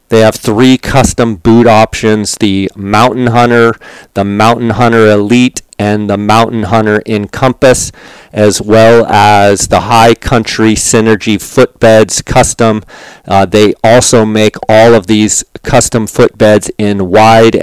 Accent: American